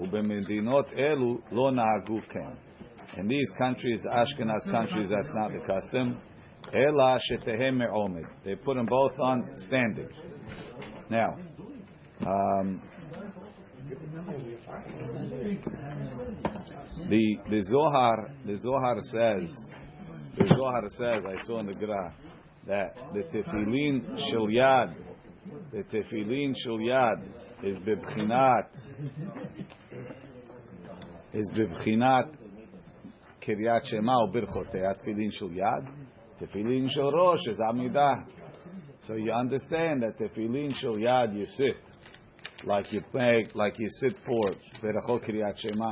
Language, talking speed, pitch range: English, 95 wpm, 105-130 Hz